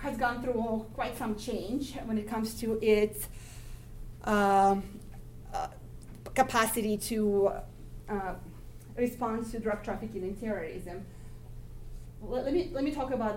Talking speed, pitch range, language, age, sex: 125 wpm, 195-230 Hz, English, 30-49, female